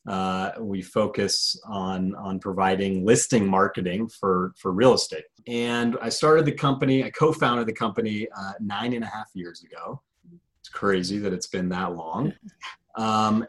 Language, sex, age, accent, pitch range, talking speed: English, male, 30-49, American, 95-120 Hz, 160 wpm